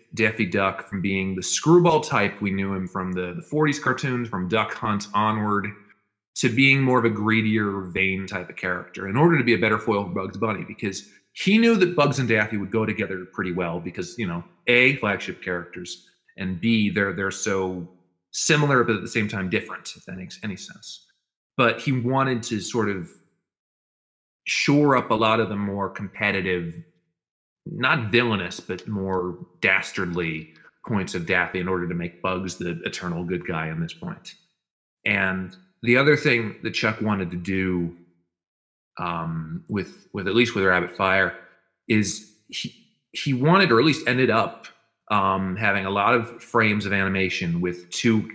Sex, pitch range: male, 95-120 Hz